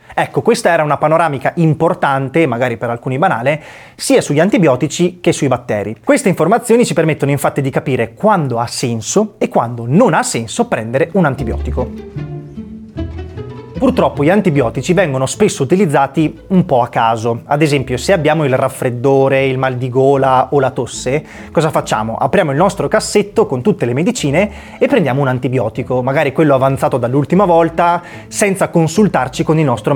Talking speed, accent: 160 wpm, native